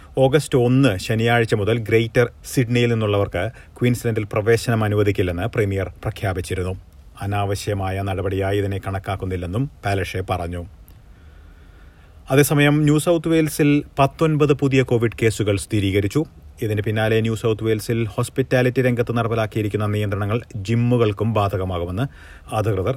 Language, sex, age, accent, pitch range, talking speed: Malayalam, male, 30-49, native, 95-125 Hz, 100 wpm